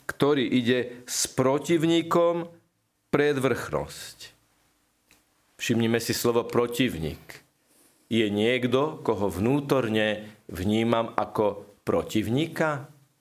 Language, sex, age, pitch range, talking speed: Slovak, male, 50-69, 115-140 Hz, 75 wpm